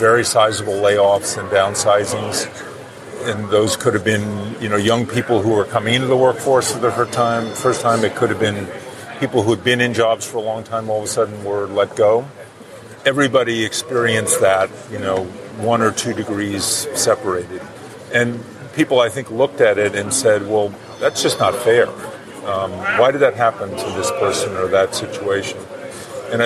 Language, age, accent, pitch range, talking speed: English, 40-59, American, 105-120 Hz, 185 wpm